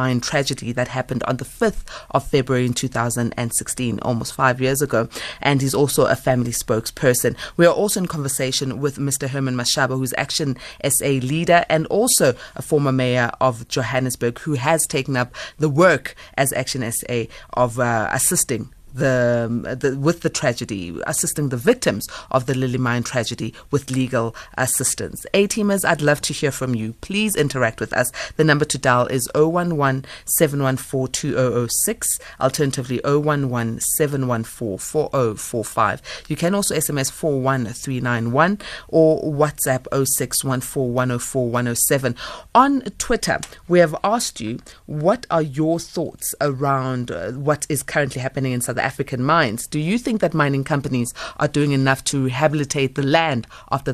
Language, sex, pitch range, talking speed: English, female, 125-160 Hz, 145 wpm